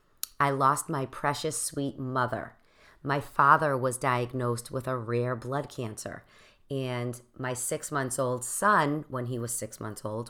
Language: English